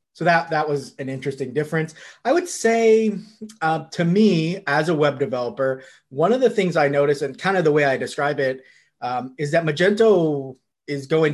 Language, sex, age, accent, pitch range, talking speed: English, male, 30-49, American, 130-165 Hz, 195 wpm